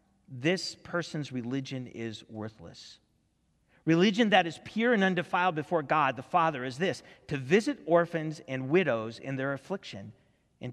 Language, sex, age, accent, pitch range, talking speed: English, male, 40-59, American, 125-175 Hz, 145 wpm